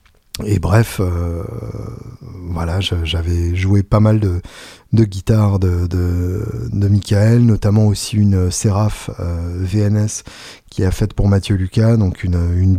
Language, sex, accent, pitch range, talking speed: French, male, French, 95-110 Hz, 145 wpm